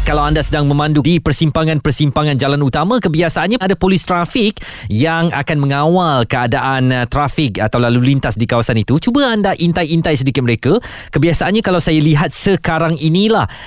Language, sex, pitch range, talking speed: Malay, male, 120-170 Hz, 150 wpm